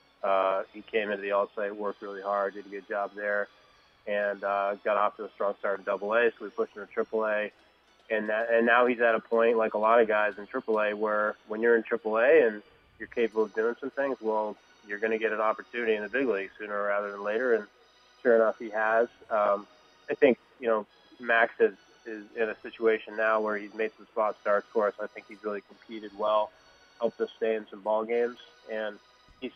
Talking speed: 230 wpm